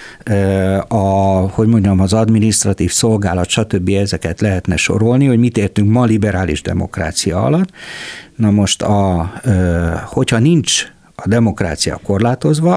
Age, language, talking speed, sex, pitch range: 60-79, Hungarian, 125 wpm, male, 90-125 Hz